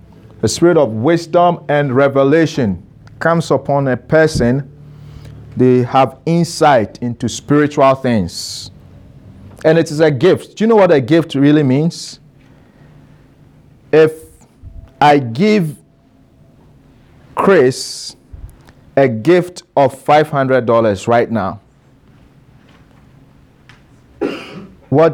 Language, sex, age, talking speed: English, male, 50-69, 95 wpm